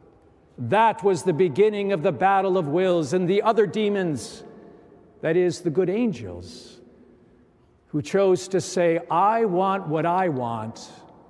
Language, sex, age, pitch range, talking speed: English, male, 50-69, 165-215 Hz, 145 wpm